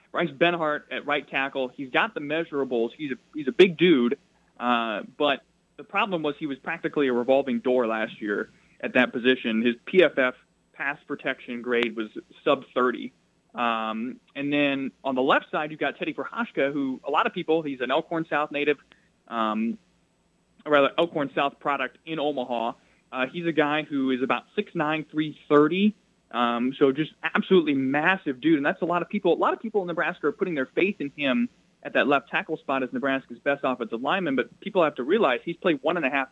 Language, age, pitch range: English, 20-39, 125-165 Hz